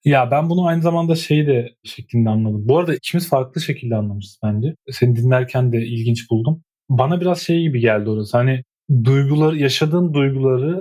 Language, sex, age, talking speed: Turkish, male, 30-49, 170 wpm